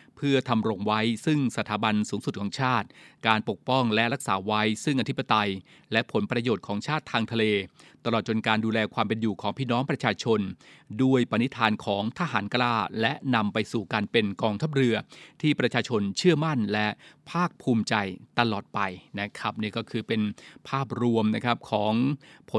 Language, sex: Thai, male